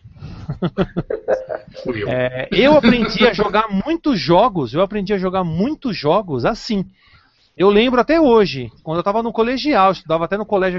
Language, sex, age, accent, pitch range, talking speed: Portuguese, male, 40-59, Brazilian, 175-255 Hz, 145 wpm